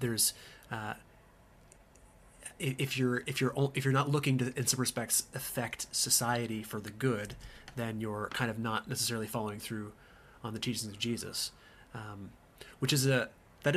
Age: 30-49